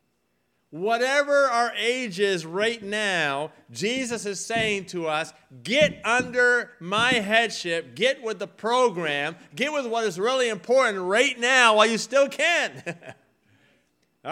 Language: English